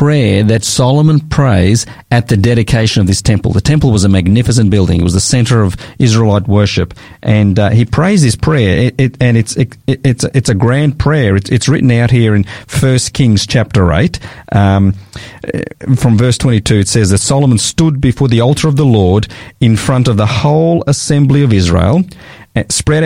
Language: English